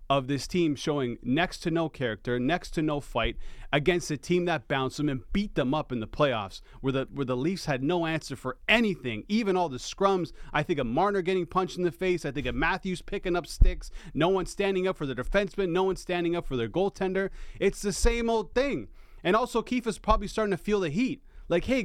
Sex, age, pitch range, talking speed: male, 30-49, 145-200 Hz, 235 wpm